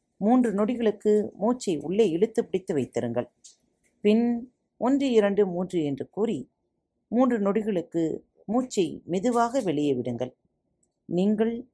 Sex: female